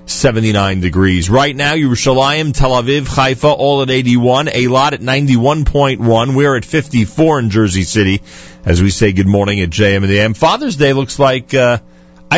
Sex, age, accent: male, 40-59, American